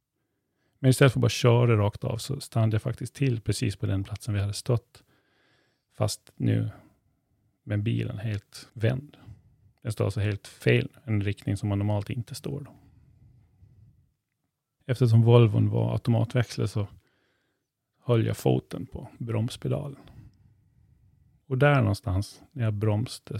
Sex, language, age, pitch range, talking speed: male, Swedish, 30-49, 110-130 Hz, 145 wpm